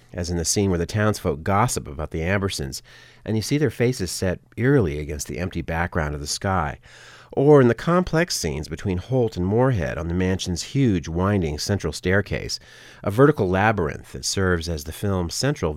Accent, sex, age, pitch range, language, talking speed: American, male, 40-59, 85-120 Hz, English, 190 wpm